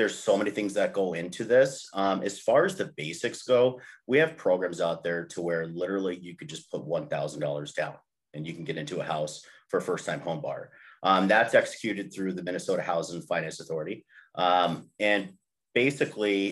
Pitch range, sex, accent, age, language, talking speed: 90-110 Hz, male, American, 30-49, English, 195 wpm